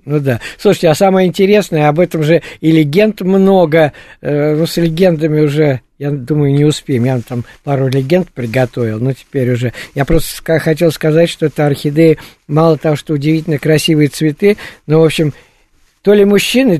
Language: Russian